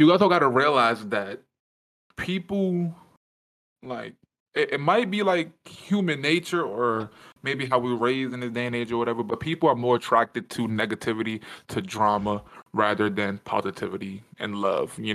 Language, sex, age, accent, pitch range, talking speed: English, male, 20-39, American, 105-135 Hz, 170 wpm